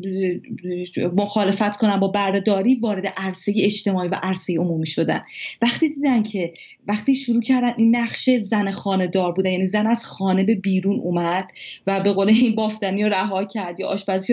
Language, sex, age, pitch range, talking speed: Persian, female, 30-49, 190-240 Hz, 170 wpm